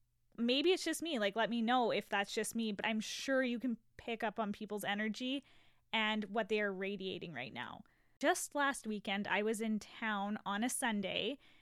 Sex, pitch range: female, 205-255 Hz